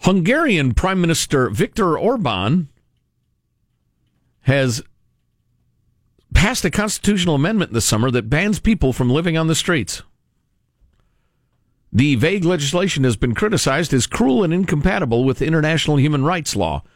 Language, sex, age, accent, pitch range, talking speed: English, male, 50-69, American, 110-160 Hz, 125 wpm